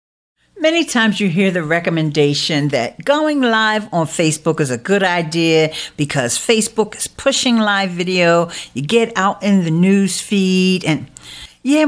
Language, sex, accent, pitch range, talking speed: English, female, American, 160-230 Hz, 150 wpm